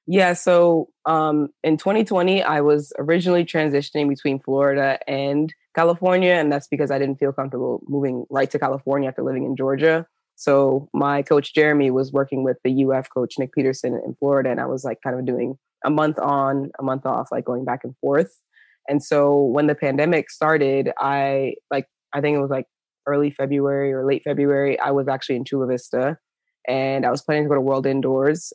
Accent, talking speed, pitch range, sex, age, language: American, 200 wpm, 135-160 Hz, female, 20-39, English